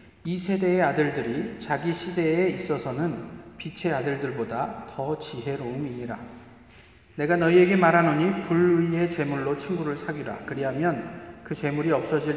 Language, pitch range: Korean, 130-175 Hz